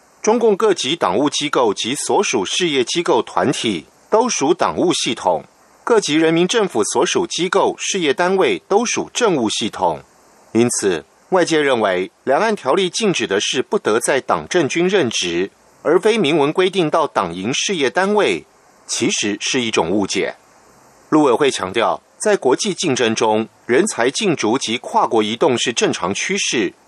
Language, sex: German, male